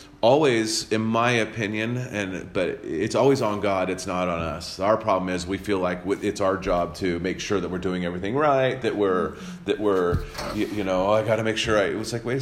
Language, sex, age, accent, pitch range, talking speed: English, male, 30-49, American, 90-110 Hz, 235 wpm